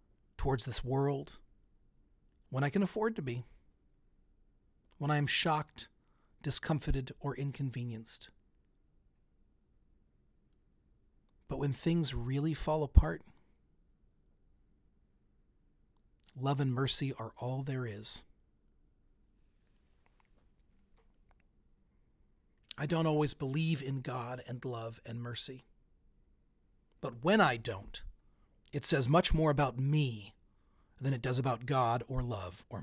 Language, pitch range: English, 115-145 Hz